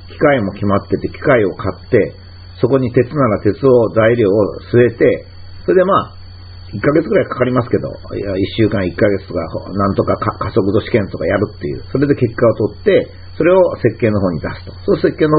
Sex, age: male, 50-69